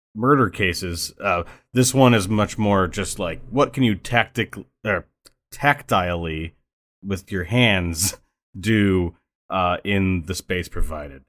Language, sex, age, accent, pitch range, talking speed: English, male, 30-49, American, 90-115 Hz, 135 wpm